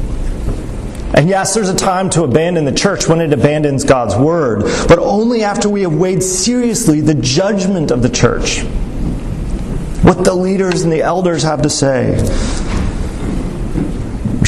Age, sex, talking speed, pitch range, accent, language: 40-59, male, 150 wpm, 115-165 Hz, American, English